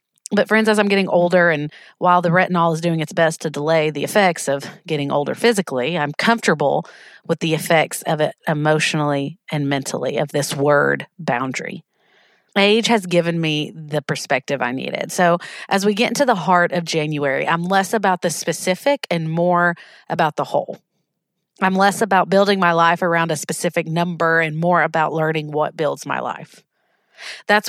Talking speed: 180 wpm